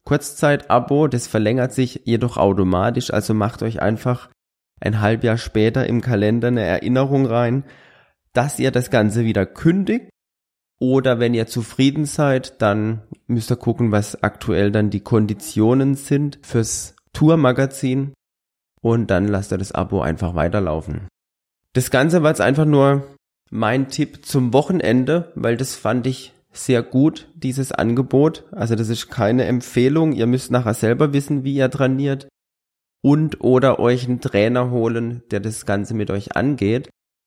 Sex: male